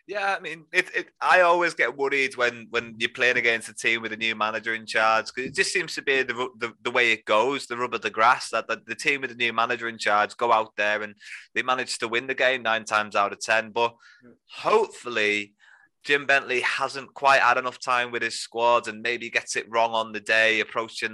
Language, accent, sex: English, British, male